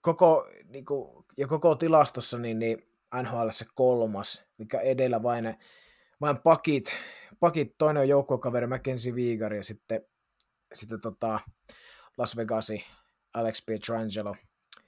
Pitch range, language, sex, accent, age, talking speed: 110-135 Hz, Finnish, male, native, 20-39, 120 wpm